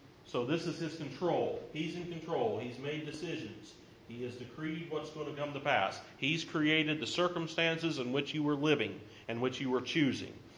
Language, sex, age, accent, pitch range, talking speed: English, male, 40-59, American, 110-150 Hz, 195 wpm